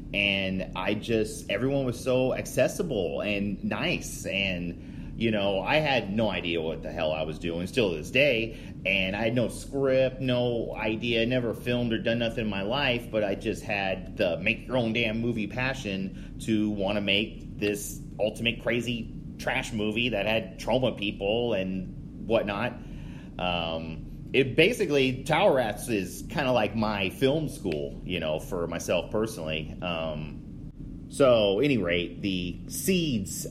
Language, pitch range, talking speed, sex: English, 85-115 Hz, 160 wpm, male